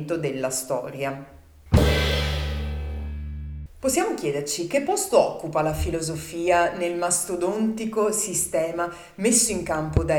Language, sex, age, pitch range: Italian, female, 30-49, 155-230 Hz